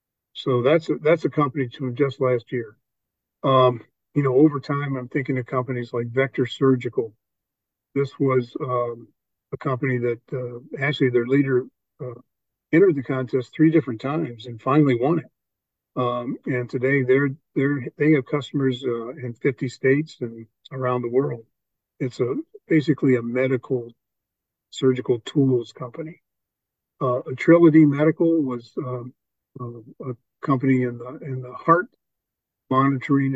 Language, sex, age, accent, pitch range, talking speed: English, male, 50-69, American, 125-145 Hz, 145 wpm